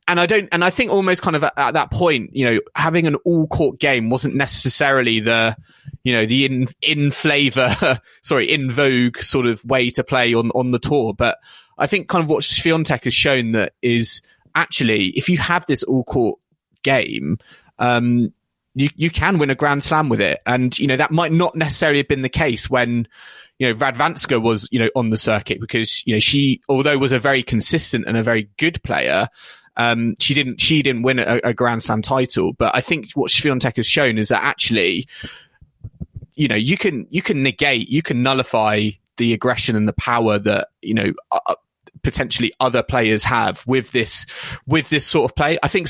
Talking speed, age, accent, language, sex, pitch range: 205 wpm, 20-39, British, English, male, 120-150 Hz